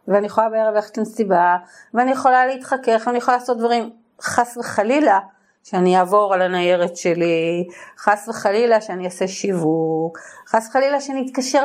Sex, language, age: female, Hebrew, 30-49